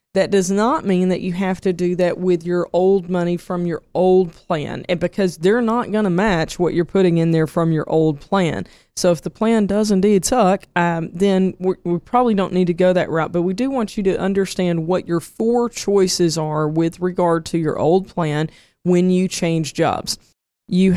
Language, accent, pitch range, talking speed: English, American, 165-195 Hz, 215 wpm